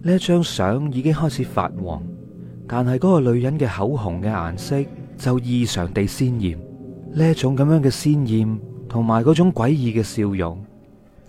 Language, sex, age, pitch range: Chinese, male, 30-49, 95-140 Hz